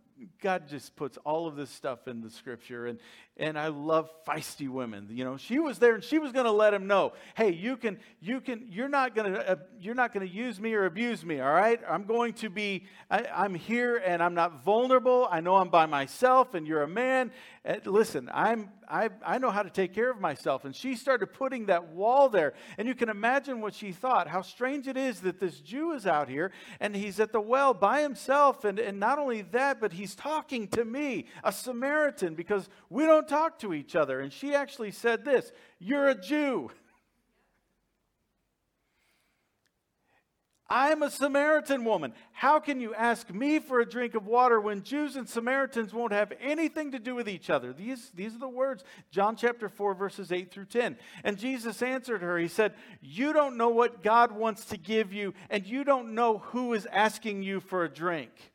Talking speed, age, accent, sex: 210 wpm, 50-69, American, male